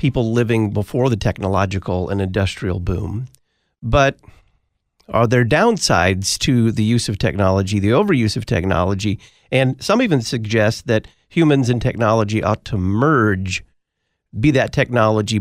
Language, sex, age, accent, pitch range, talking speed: English, male, 40-59, American, 105-135 Hz, 135 wpm